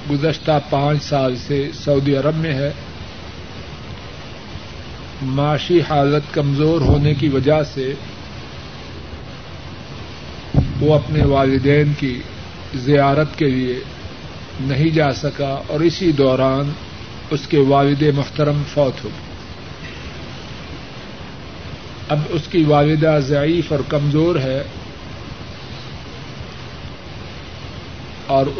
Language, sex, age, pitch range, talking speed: Urdu, male, 50-69, 135-155 Hz, 90 wpm